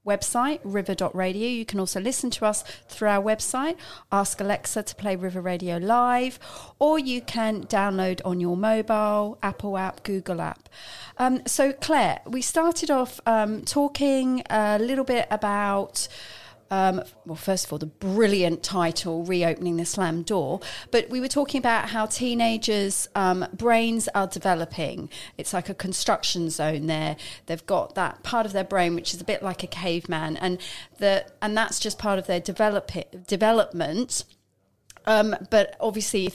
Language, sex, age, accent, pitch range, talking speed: English, female, 40-59, British, 180-235 Hz, 165 wpm